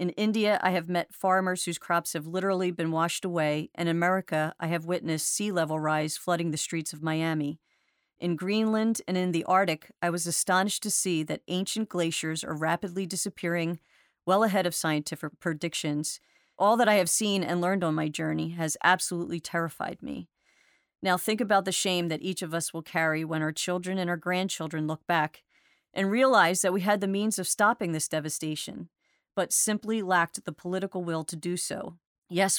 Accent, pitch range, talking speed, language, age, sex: American, 160-190 Hz, 190 wpm, English, 40-59, female